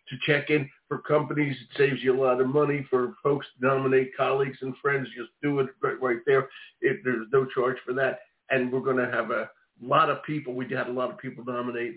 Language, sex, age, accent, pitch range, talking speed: English, male, 50-69, American, 130-155 Hz, 235 wpm